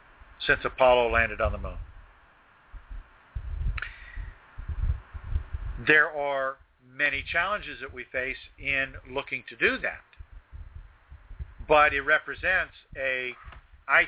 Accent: American